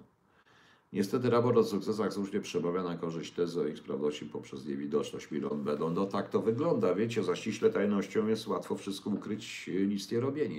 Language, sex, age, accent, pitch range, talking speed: Polish, male, 50-69, native, 95-115 Hz, 170 wpm